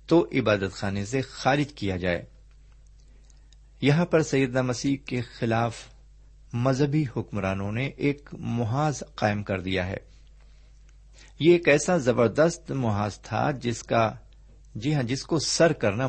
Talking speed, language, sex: 135 wpm, Urdu, male